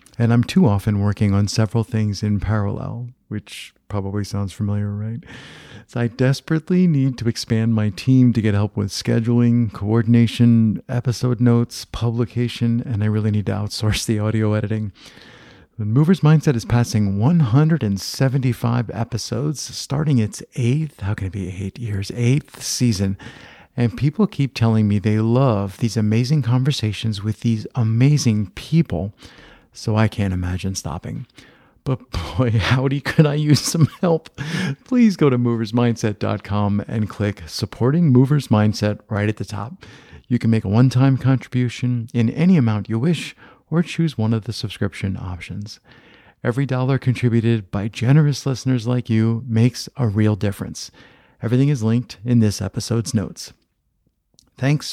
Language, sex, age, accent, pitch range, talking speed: English, male, 50-69, American, 105-130 Hz, 150 wpm